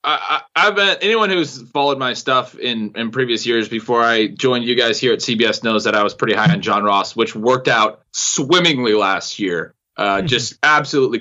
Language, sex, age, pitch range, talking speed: English, male, 20-39, 130-175 Hz, 200 wpm